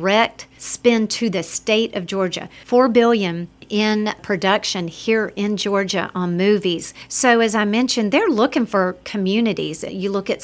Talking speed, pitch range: 155 wpm, 190-230 Hz